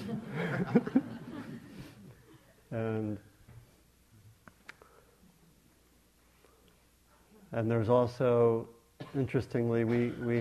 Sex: male